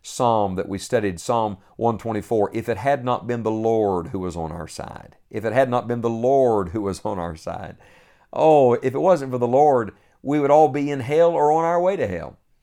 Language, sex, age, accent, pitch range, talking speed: English, male, 50-69, American, 100-130 Hz, 235 wpm